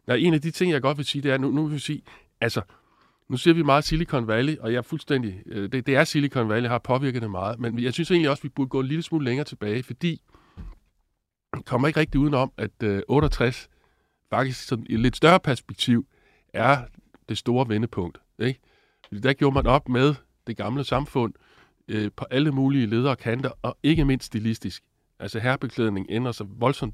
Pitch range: 115-145 Hz